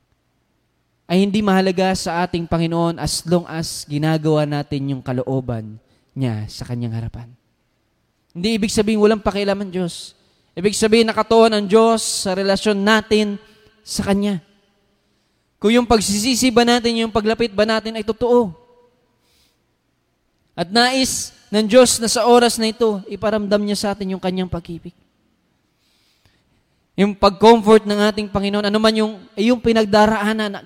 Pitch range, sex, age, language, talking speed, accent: 175-225 Hz, male, 20-39, Filipino, 140 wpm, native